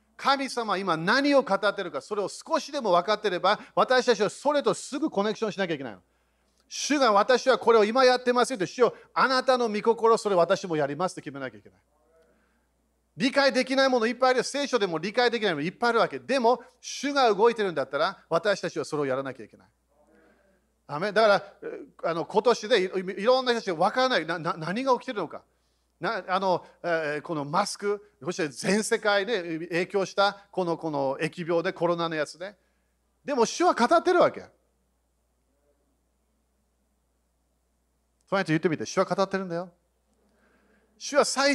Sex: male